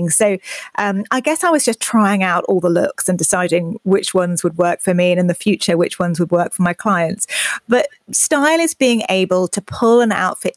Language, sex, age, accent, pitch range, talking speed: English, female, 30-49, British, 180-220 Hz, 225 wpm